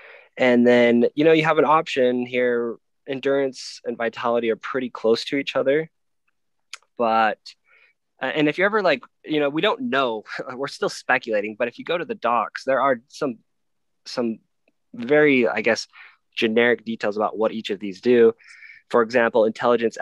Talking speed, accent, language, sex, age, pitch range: 170 wpm, American, English, male, 20-39, 105-125 Hz